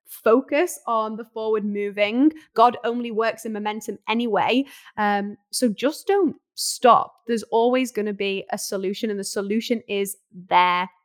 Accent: British